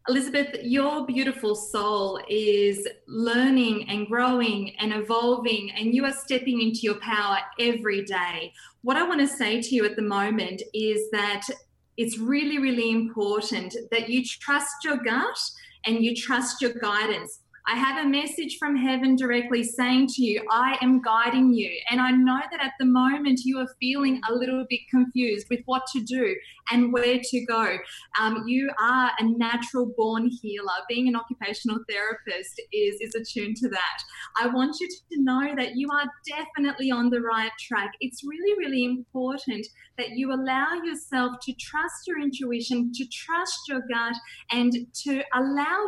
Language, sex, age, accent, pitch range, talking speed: English, female, 20-39, Australian, 230-275 Hz, 170 wpm